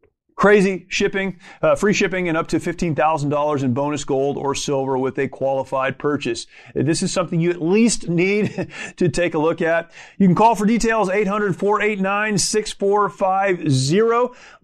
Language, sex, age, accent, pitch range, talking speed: English, male, 30-49, American, 145-185 Hz, 150 wpm